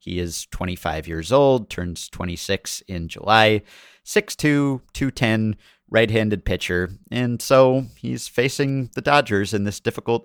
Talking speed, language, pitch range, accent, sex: 130 wpm, English, 90-115 Hz, American, male